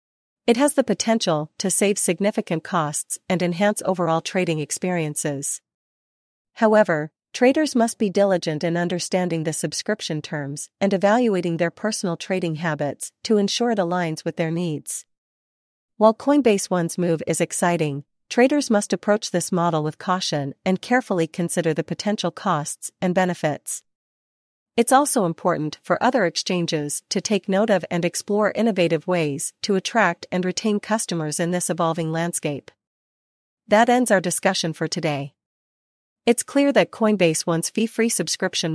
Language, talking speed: English, 145 wpm